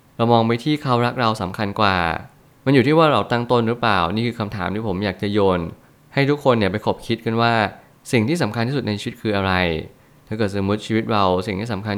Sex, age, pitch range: male, 20-39, 100-120 Hz